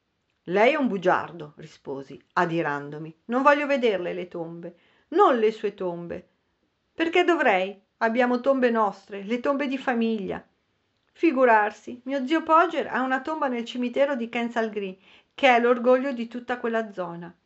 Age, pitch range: 50-69, 190-260 Hz